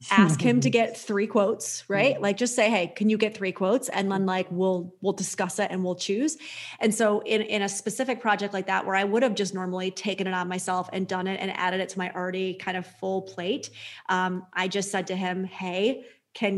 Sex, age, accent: female, 30-49, American